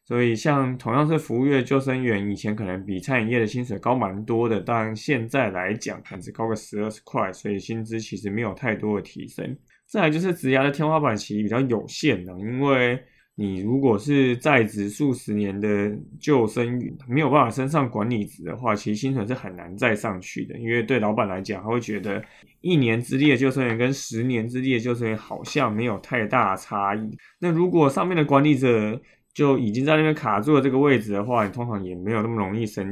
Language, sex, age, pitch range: Chinese, male, 20-39, 105-135 Hz